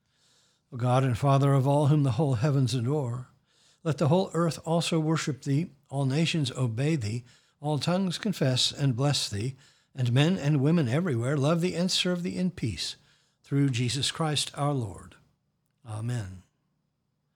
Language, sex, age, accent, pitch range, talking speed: English, male, 60-79, American, 130-155 Hz, 160 wpm